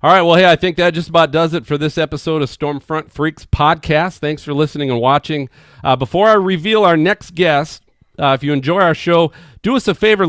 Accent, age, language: American, 40-59, English